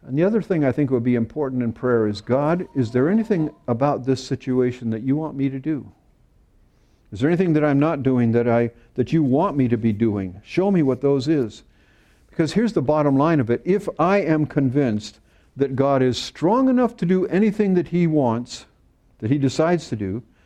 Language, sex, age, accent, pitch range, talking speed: English, male, 50-69, American, 120-170 Hz, 215 wpm